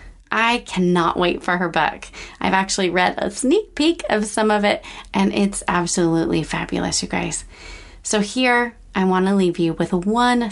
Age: 30-49